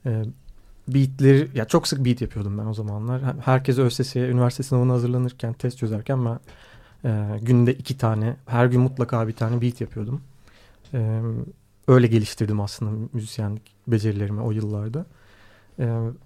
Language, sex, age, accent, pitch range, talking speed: Turkish, male, 40-59, native, 115-140 Hz, 135 wpm